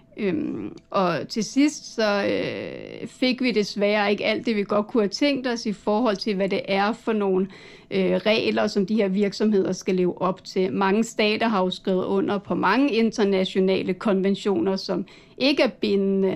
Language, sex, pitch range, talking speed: Danish, female, 195-230 Hz, 185 wpm